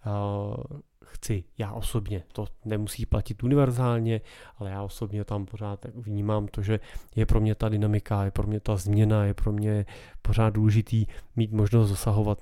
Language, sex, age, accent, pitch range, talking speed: Czech, male, 30-49, native, 105-125 Hz, 160 wpm